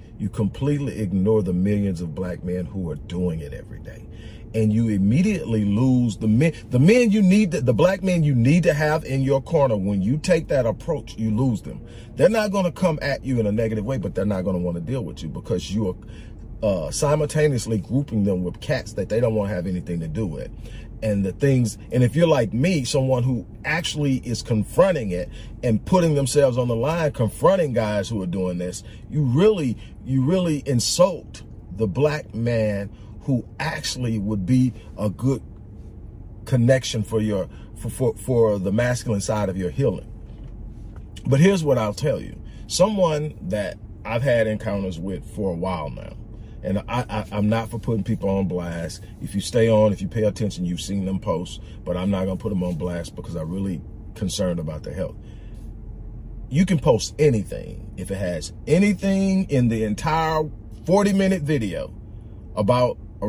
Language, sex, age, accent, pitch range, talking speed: English, male, 40-59, American, 100-135 Hz, 185 wpm